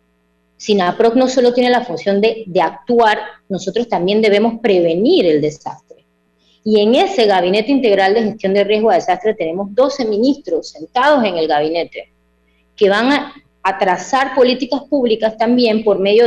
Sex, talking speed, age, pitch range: female, 160 wpm, 20-39, 165-235 Hz